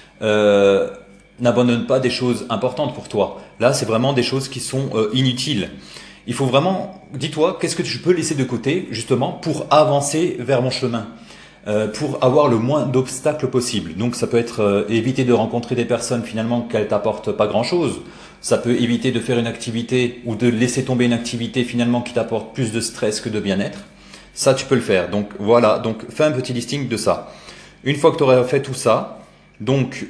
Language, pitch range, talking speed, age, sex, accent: French, 115-135 Hz, 200 wpm, 30-49, male, French